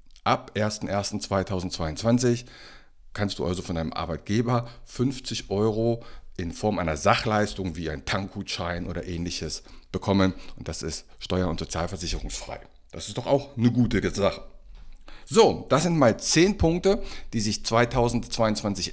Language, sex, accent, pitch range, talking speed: German, male, German, 90-125 Hz, 135 wpm